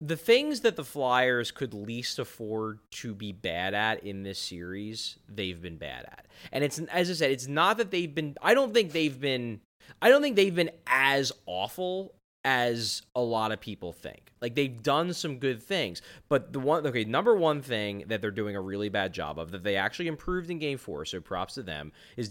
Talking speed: 215 wpm